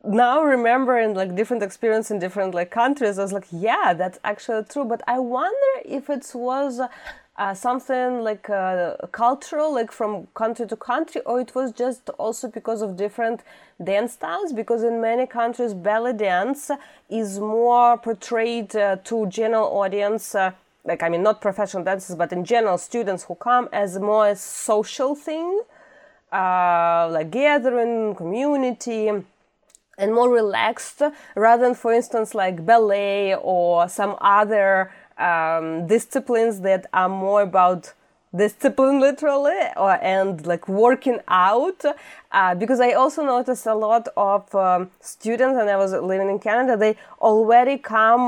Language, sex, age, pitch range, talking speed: English, female, 20-39, 200-250 Hz, 150 wpm